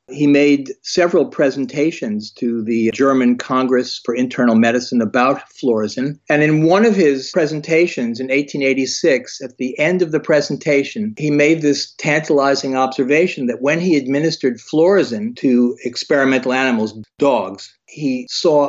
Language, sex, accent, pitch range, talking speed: English, male, American, 125-150 Hz, 140 wpm